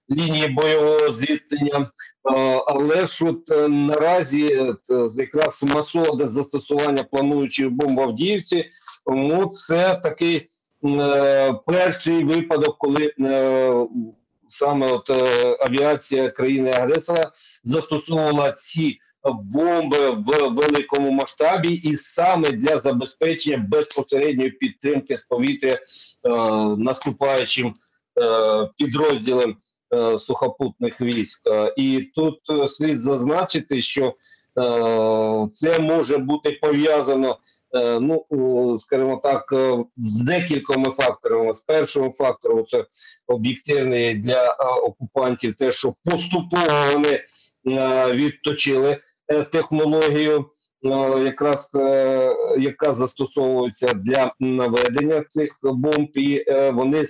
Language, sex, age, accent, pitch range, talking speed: Ukrainian, male, 50-69, native, 130-155 Hz, 85 wpm